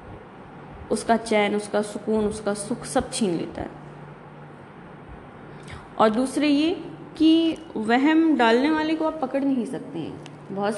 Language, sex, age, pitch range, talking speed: Urdu, female, 20-39, 215-280 Hz, 150 wpm